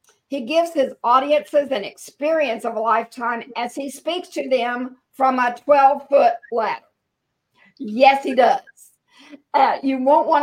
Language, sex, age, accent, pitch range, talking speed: English, female, 50-69, American, 235-295 Hz, 145 wpm